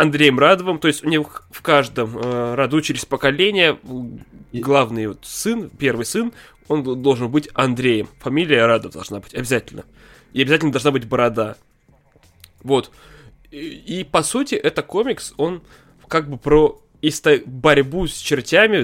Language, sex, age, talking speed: Russian, male, 20-39, 145 wpm